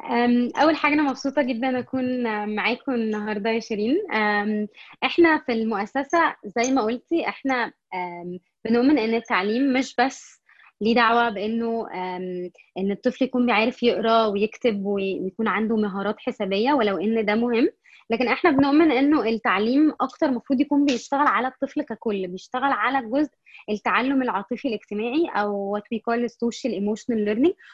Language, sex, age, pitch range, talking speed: Arabic, female, 20-39, 220-285 Hz, 135 wpm